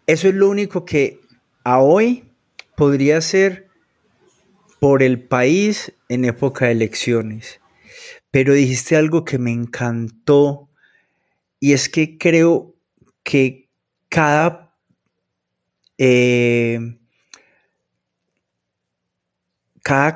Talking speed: 90 wpm